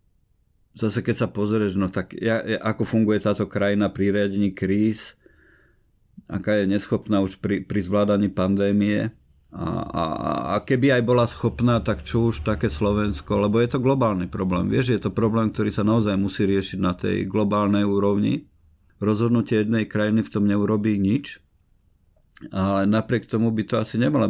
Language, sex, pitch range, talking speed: Slovak, male, 95-110 Hz, 160 wpm